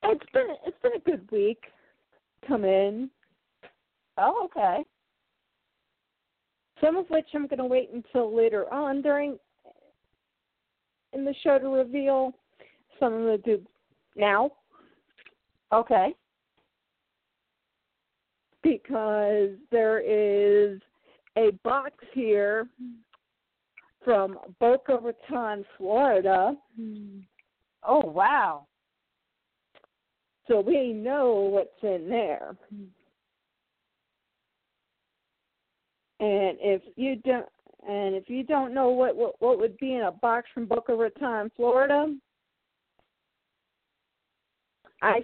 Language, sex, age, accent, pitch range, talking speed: English, female, 50-69, American, 220-285 Hz, 95 wpm